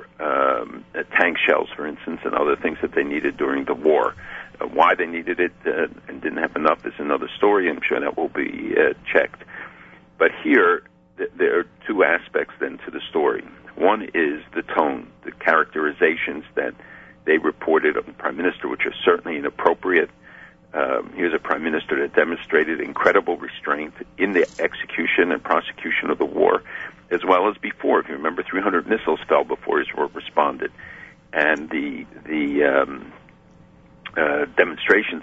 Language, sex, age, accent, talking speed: English, male, 50-69, American, 170 wpm